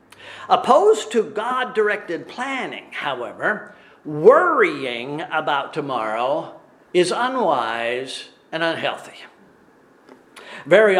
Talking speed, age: 70 wpm, 50-69